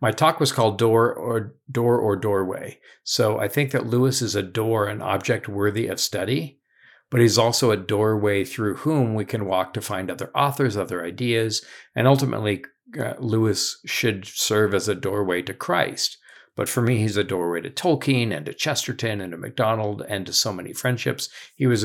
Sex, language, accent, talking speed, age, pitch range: male, English, American, 190 wpm, 50-69, 105-125 Hz